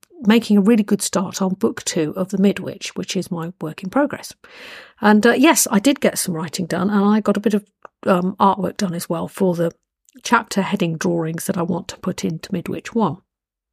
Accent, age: British, 50-69